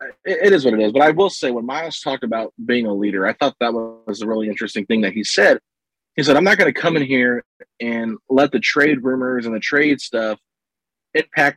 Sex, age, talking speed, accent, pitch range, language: male, 30-49, 240 wpm, American, 110-140 Hz, English